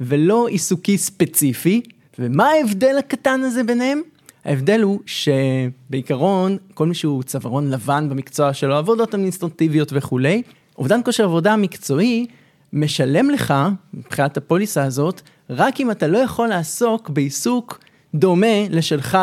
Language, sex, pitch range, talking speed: Hebrew, male, 145-210 Hz, 120 wpm